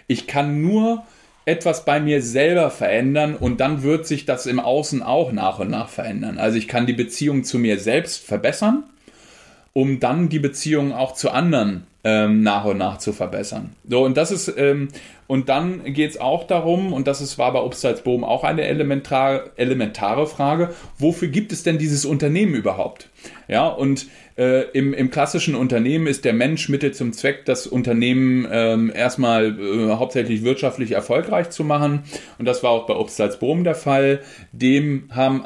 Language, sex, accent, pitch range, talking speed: German, male, German, 110-140 Hz, 180 wpm